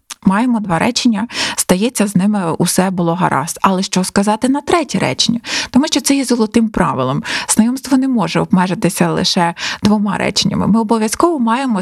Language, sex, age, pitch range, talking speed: Ukrainian, female, 20-39, 185-245 Hz, 155 wpm